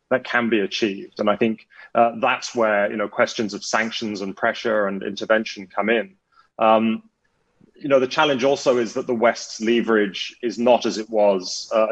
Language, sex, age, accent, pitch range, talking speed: English, male, 30-49, British, 100-120 Hz, 190 wpm